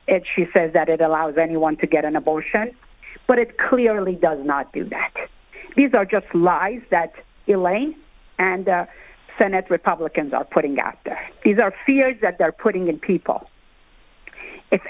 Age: 50-69